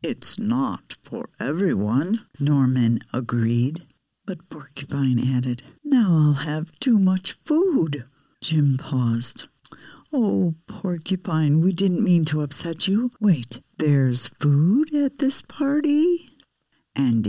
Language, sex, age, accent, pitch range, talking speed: English, female, 60-79, American, 125-190 Hz, 110 wpm